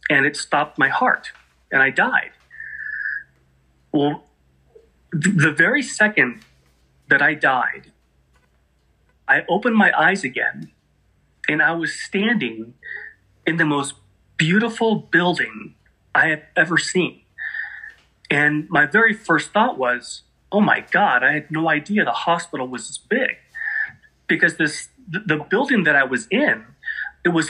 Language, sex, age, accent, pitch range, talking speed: English, male, 30-49, American, 145-220 Hz, 135 wpm